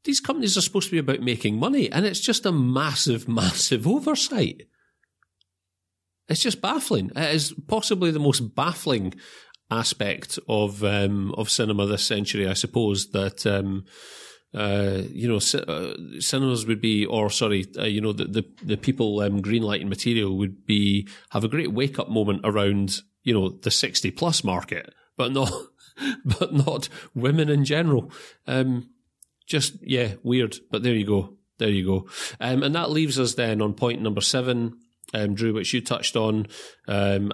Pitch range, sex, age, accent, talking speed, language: 100-130 Hz, male, 40-59, British, 170 wpm, English